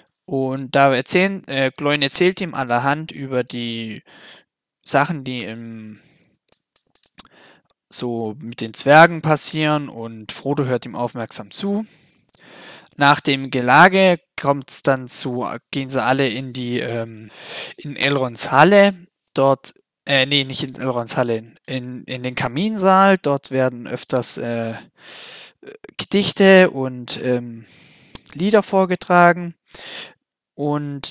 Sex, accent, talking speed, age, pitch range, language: male, German, 115 wpm, 20-39, 125-165 Hz, German